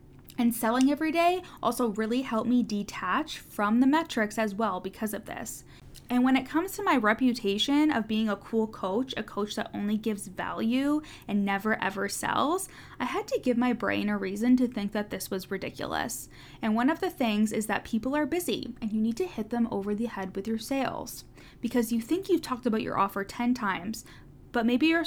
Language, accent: English, American